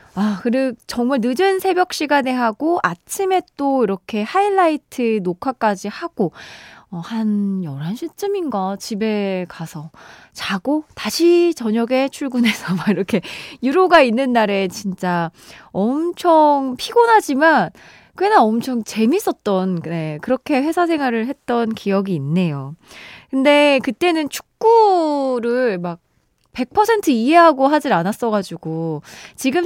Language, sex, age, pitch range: Korean, female, 20-39, 190-290 Hz